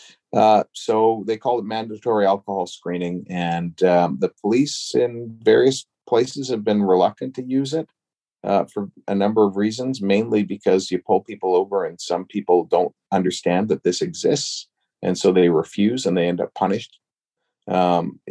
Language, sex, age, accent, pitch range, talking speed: English, male, 40-59, American, 90-115 Hz, 165 wpm